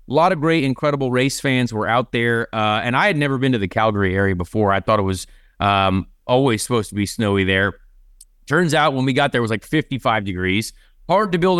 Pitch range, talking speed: 110-145 Hz, 240 wpm